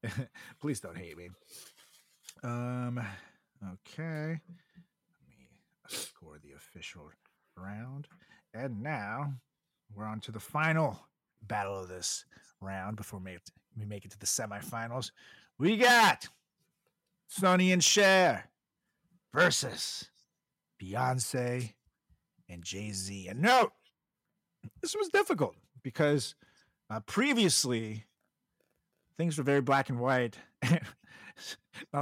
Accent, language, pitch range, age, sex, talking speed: American, English, 115-170 Hz, 40-59, male, 105 wpm